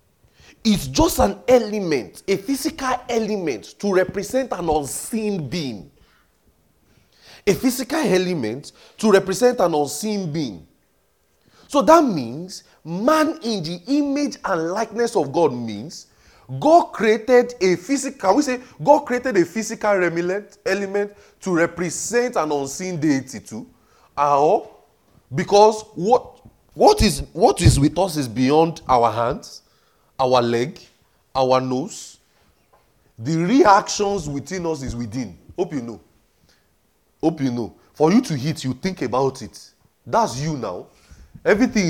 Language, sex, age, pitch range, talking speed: English, male, 30-49, 135-220 Hz, 130 wpm